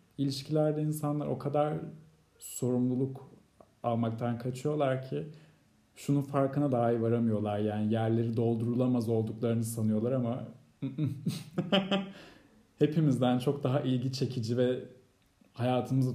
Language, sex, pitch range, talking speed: Turkish, male, 110-140 Hz, 95 wpm